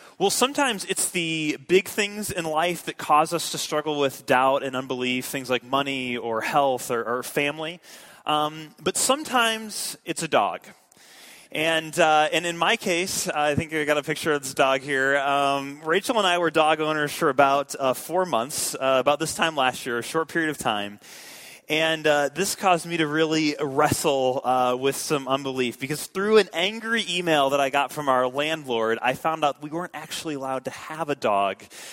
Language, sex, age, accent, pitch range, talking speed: English, male, 20-39, American, 130-160 Hz, 195 wpm